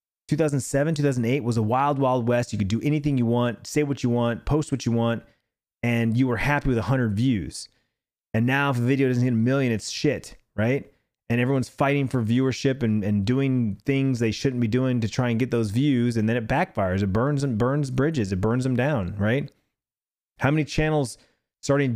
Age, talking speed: 30-49, 210 wpm